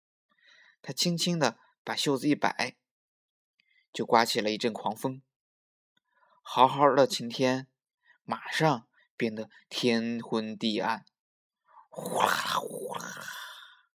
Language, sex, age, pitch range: Chinese, male, 20-39, 115-145 Hz